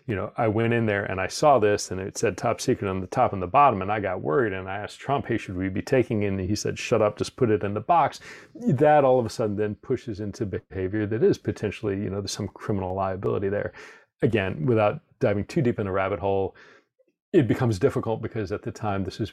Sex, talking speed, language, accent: male, 260 wpm, English, American